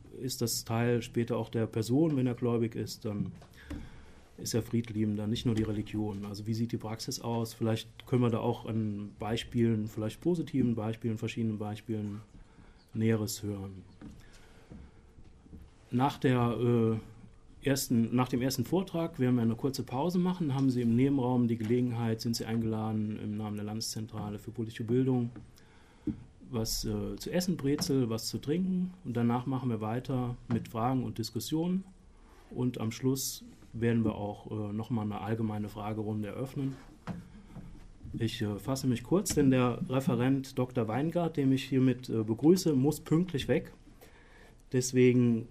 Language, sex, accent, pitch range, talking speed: German, male, German, 110-125 Hz, 155 wpm